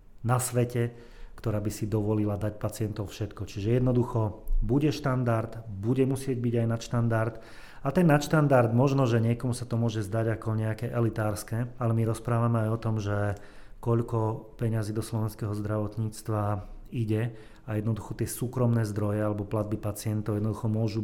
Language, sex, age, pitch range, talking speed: Slovak, male, 30-49, 105-120 Hz, 160 wpm